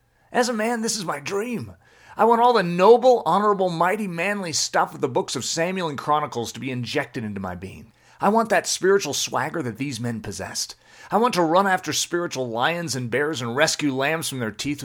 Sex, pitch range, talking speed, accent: male, 125-180 Hz, 215 wpm, American